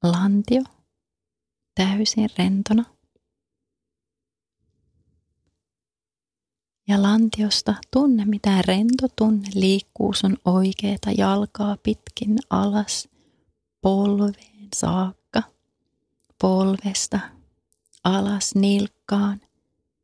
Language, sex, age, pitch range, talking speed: Finnish, female, 30-49, 195-215 Hz, 60 wpm